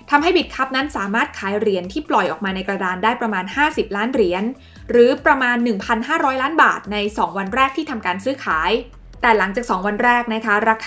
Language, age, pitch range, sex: Thai, 20-39, 200-265 Hz, female